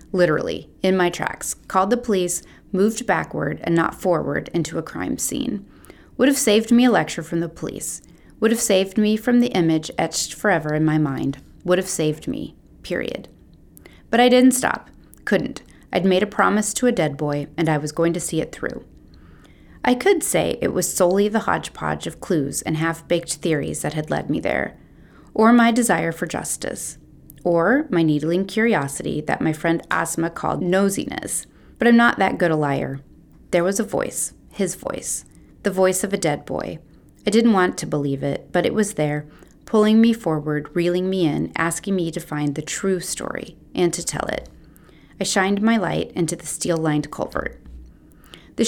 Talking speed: 185 wpm